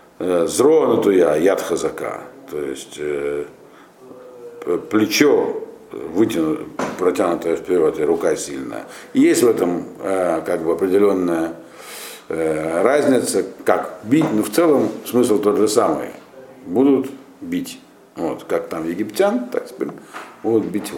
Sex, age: male, 50-69